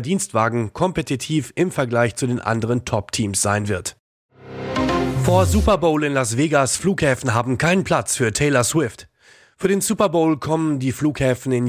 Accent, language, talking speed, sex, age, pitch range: German, German, 160 wpm, male, 30-49, 120-150 Hz